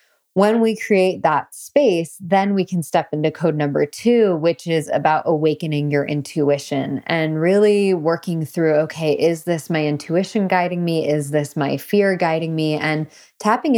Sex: female